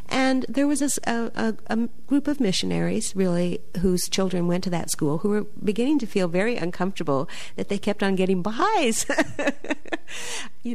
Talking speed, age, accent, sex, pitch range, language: 160 wpm, 50-69, American, female, 165-215 Hz, English